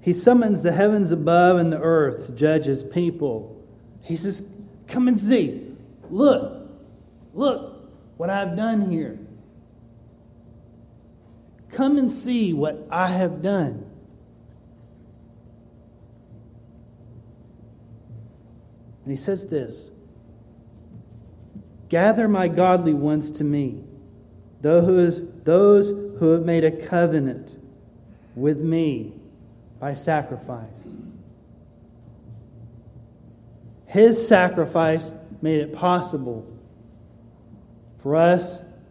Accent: American